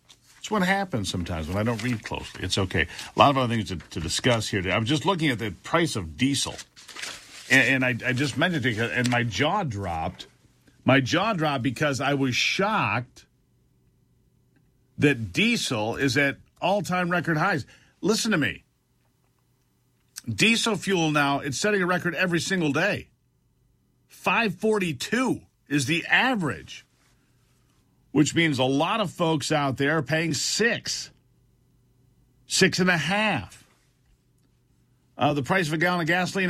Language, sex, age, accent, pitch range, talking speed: English, male, 50-69, American, 125-175 Hz, 155 wpm